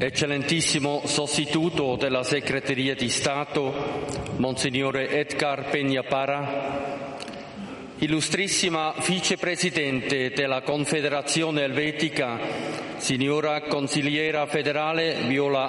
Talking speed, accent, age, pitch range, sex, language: 70 wpm, Swiss, 50-69, 145-160 Hz, male, Italian